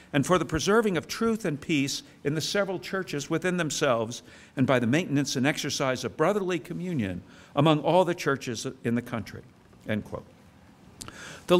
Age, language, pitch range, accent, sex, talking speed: 60-79, English, 130-185 Hz, American, male, 170 wpm